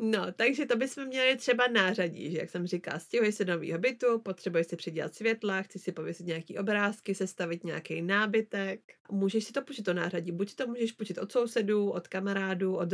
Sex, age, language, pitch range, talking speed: female, 30-49, Czech, 185-210 Hz, 200 wpm